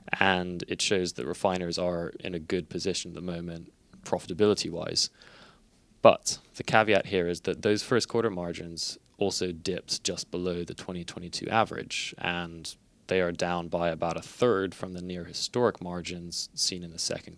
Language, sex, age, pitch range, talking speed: English, male, 20-39, 85-95 Hz, 165 wpm